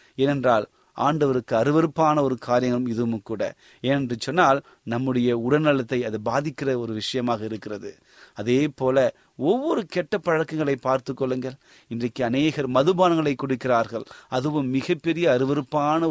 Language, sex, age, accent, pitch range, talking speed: Tamil, male, 30-49, native, 125-160 Hz, 110 wpm